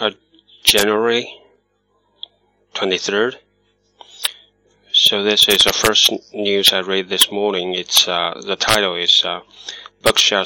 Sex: male